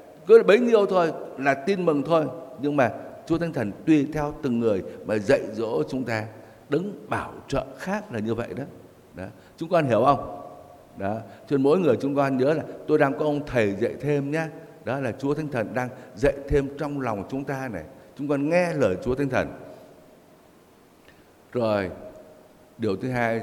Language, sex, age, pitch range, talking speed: Vietnamese, male, 60-79, 115-150 Hz, 190 wpm